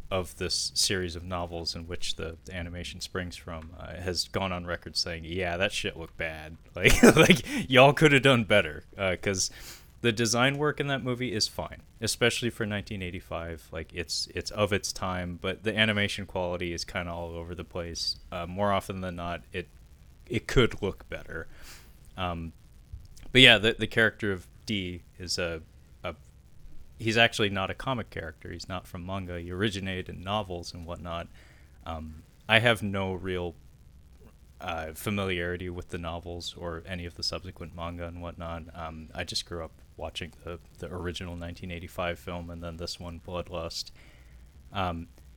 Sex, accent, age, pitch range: male, American, 30-49, 80-95 Hz